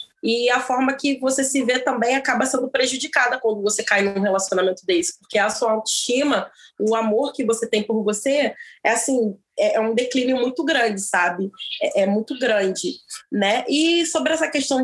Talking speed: 180 wpm